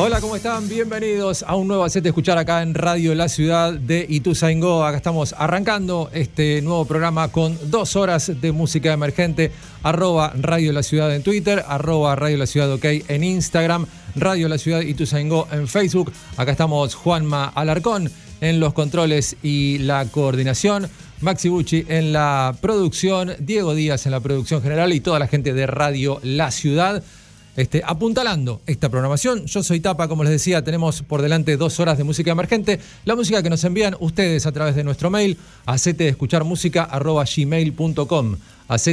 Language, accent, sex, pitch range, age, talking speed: Spanish, Argentinian, male, 145-175 Hz, 40-59, 165 wpm